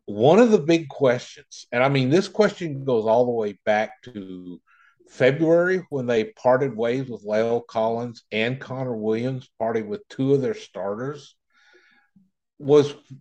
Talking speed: 155 wpm